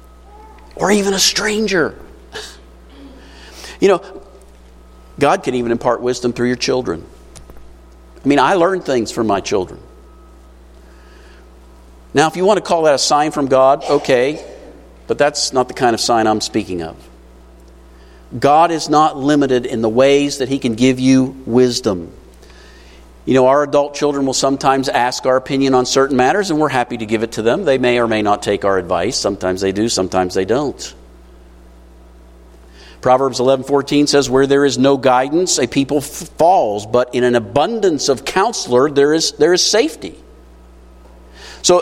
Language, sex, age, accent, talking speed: English, male, 50-69, American, 170 wpm